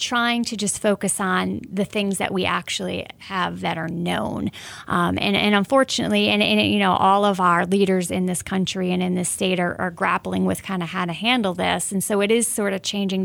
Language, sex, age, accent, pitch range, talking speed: English, female, 30-49, American, 185-205 Hz, 225 wpm